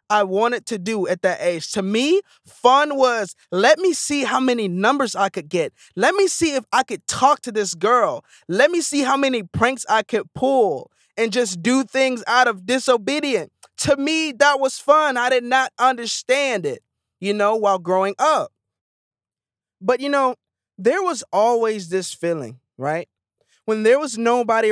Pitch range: 190-255 Hz